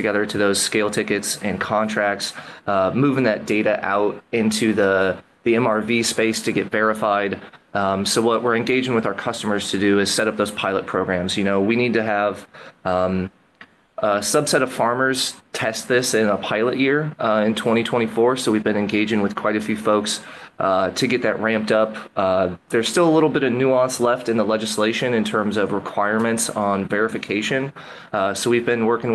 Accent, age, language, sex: American, 20-39, English, male